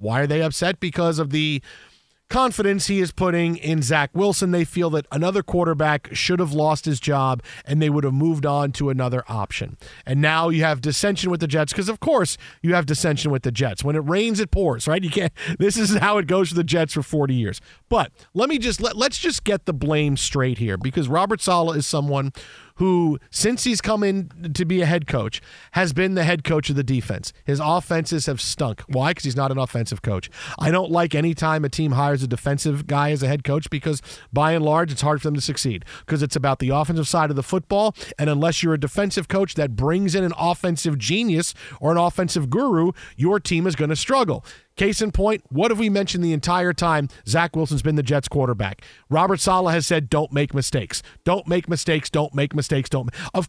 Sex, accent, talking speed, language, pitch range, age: male, American, 230 wpm, English, 140-180 Hz, 40-59